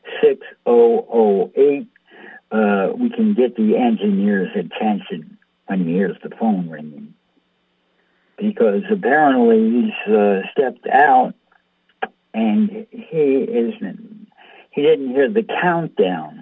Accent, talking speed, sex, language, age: American, 100 wpm, male, English, 60-79